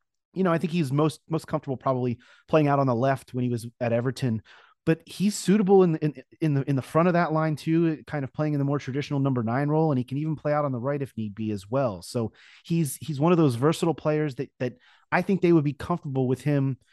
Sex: male